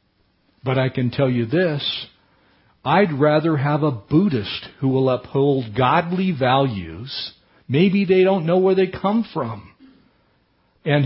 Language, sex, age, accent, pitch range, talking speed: English, male, 50-69, American, 115-150 Hz, 135 wpm